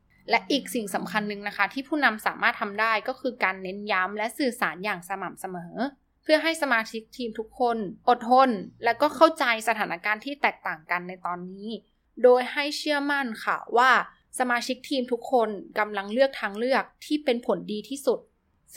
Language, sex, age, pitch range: Thai, female, 10-29, 200-260 Hz